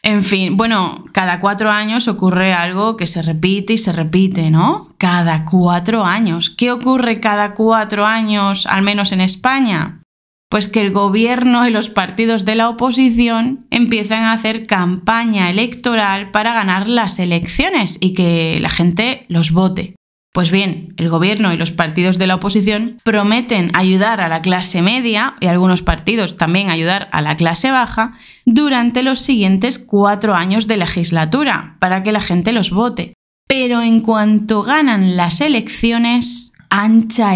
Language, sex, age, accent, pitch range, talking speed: Spanish, female, 20-39, Spanish, 180-225 Hz, 155 wpm